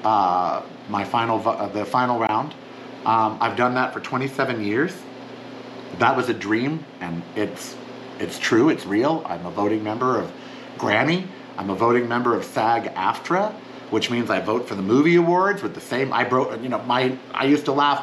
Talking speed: 185 wpm